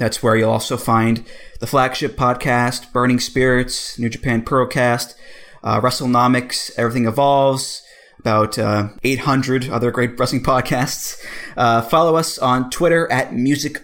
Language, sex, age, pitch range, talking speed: English, male, 20-39, 115-145 Hz, 135 wpm